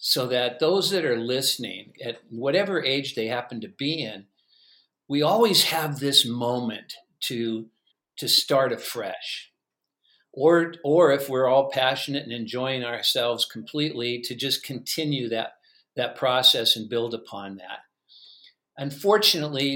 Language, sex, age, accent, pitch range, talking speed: English, male, 50-69, American, 115-140 Hz, 135 wpm